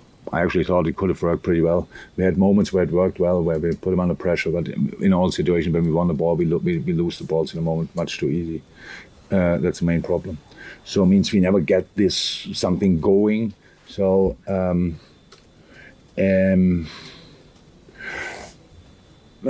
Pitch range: 85-95 Hz